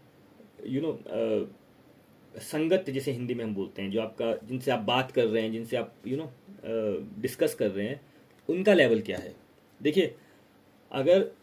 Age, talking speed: 30-49, 150 wpm